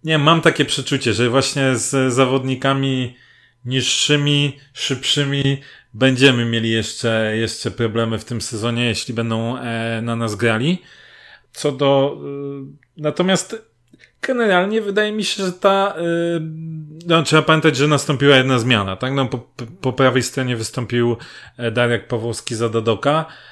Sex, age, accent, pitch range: male, 30-49, native, 115-140 Hz